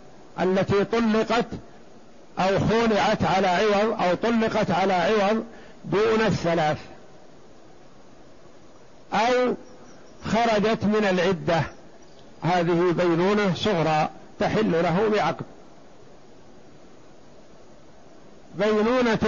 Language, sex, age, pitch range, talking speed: Arabic, male, 50-69, 175-210 Hz, 70 wpm